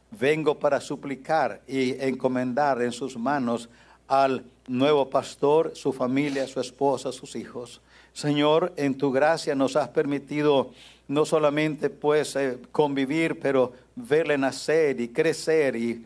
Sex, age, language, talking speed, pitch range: male, 60-79, English, 130 wpm, 120-145 Hz